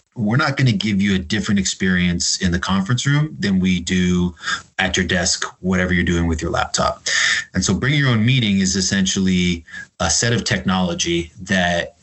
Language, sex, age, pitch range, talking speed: English, male, 30-49, 90-105 Hz, 190 wpm